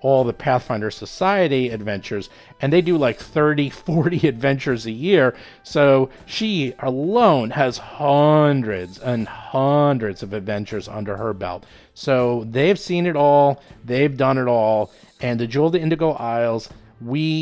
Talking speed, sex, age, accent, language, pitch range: 150 wpm, male, 40-59, American, English, 115-145 Hz